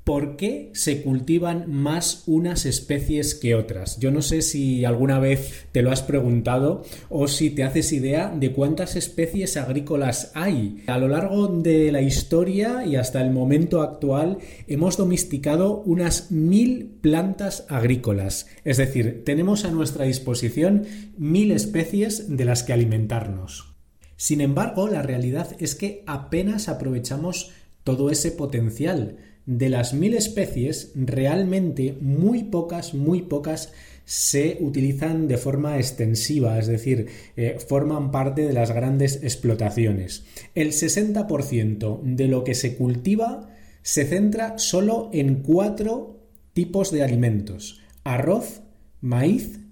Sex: male